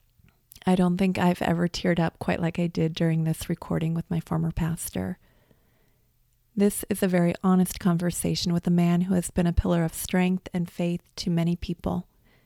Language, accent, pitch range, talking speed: English, American, 165-195 Hz, 190 wpm